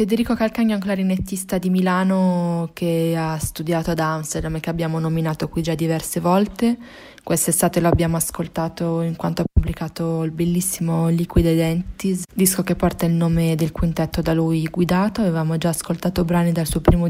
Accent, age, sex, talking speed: native, 20-39, female, 170 wpm